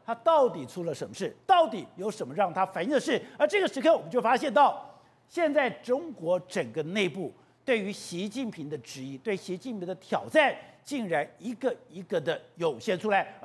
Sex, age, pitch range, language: male, 50-69, 200-290 Hz, Chinese